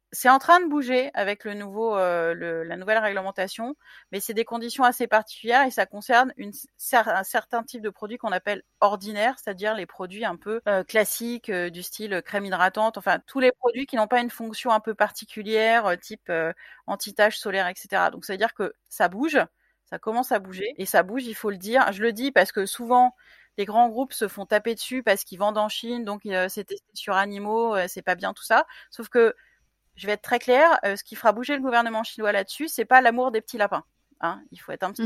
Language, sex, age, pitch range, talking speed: French, female, 30-49, 205-255 Hz, 235 wpm